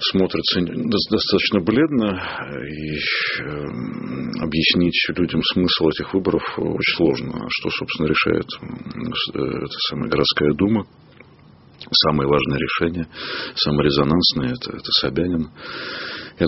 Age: 40-59